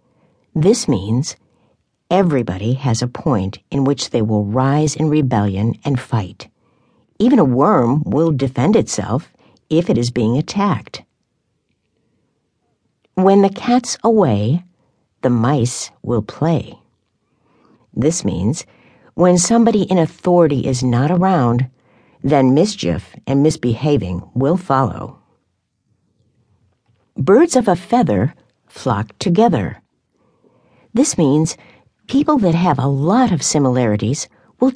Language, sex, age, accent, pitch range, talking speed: English, female, 60-79, American, 115-170 Hz, 110 wpm